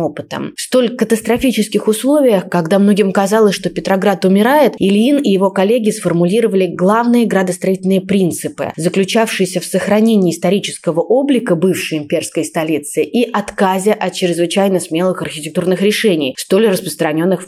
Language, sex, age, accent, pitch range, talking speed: Russian, female, 20-39, native, 175-225 Hz, 125 wpm